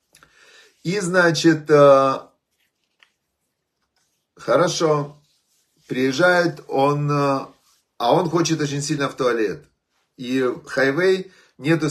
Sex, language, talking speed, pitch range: male, Russian, 80 wpm, 130-165 Hz